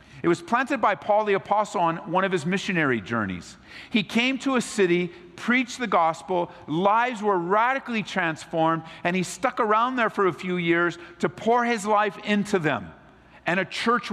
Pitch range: 155-210 Hz